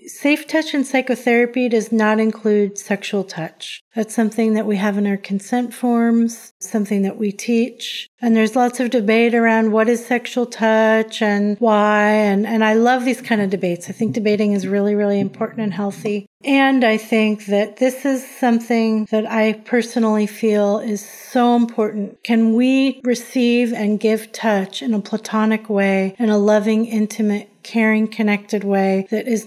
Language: English